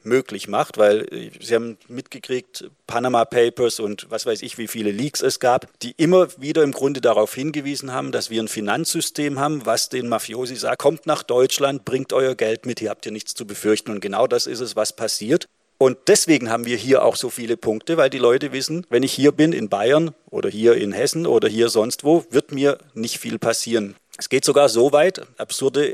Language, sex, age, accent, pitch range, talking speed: German, male, 40-59, German, 115-155 Hz, 215 wpm